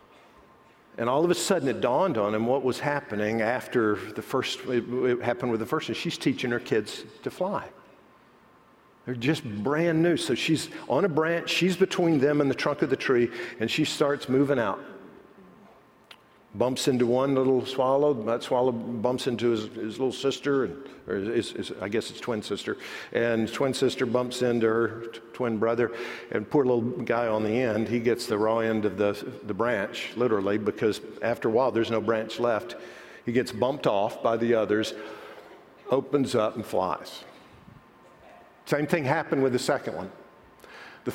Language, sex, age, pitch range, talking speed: English, male, 50-69, 115-140 Hz, 170 wpm